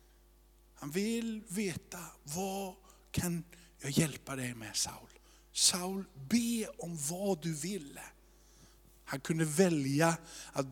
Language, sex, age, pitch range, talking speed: Swedish, male, 50-69, 120-170 Hz, 110 wpm